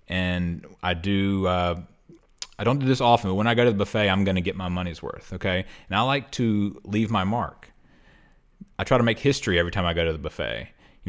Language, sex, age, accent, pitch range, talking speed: English, male, 30-49, American, 90-110 Hz, 235 wpm